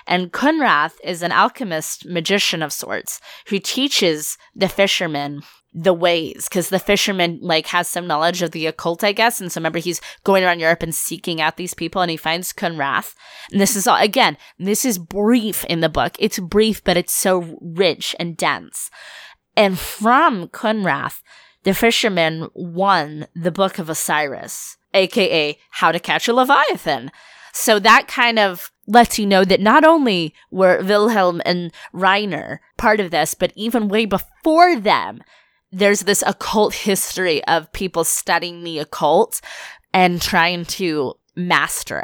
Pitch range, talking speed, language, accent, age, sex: 170-215 Hz, 160 wpm, English, American, 20-39, female